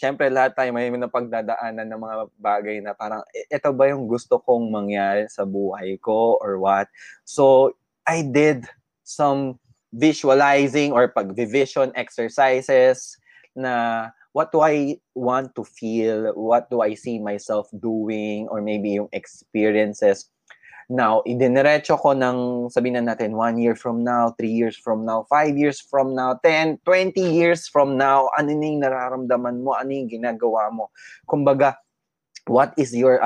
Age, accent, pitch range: 20-39, native, 110-135 Hz